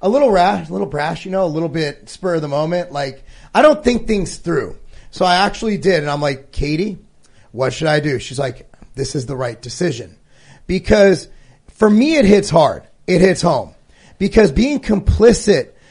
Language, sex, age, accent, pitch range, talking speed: English, male, 40-59, American, 165-225 Hz, 195 wpm